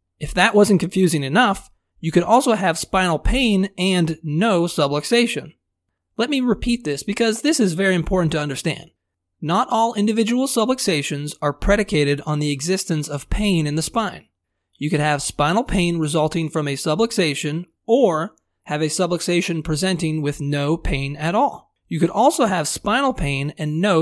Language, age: English, 30-49